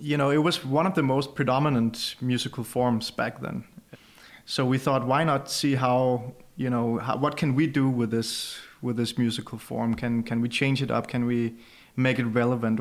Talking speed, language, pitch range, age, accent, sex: 205 wpm, German, 120-145 Hz, 30-49, Danish, male